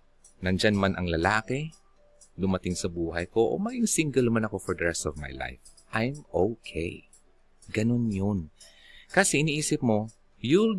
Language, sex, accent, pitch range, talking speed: Filipino, male, native, 90-125 Hz, 150 wpm